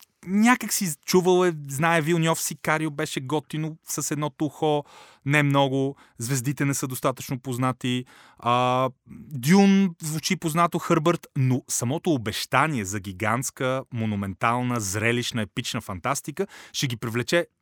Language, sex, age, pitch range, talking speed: Bulgarian, male, 30-49, 115-155 Hz, 125 wpm